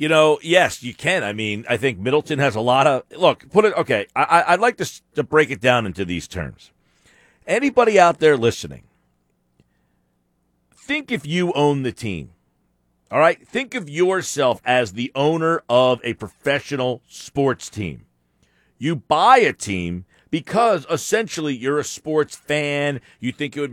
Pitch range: 120-200 Hz